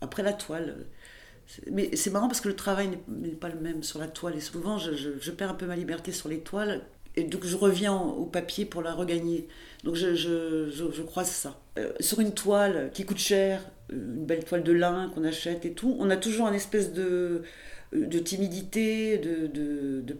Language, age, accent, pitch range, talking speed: French, 40-59, French, 160-205 Hz, 225 wpm